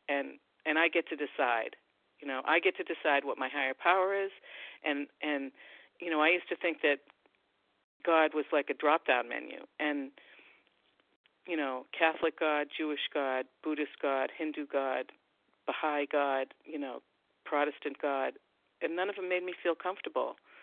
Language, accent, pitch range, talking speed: English, American, 145-175 Hz, 165 wpm